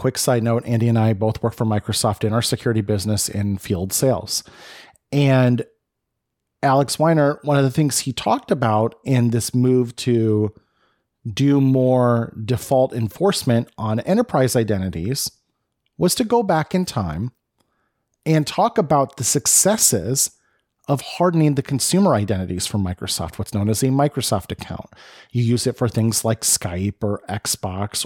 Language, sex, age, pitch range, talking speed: English, male, 30-49, 105-140 Hz, 150 wpm